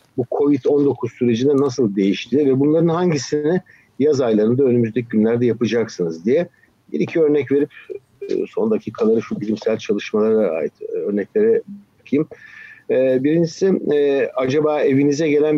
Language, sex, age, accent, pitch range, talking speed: Turkish, male, 50-69, native, 120-175 Hz, 110 wpm